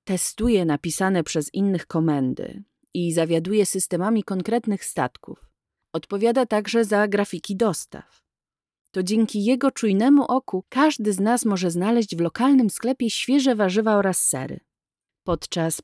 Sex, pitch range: female, 165-220 Hz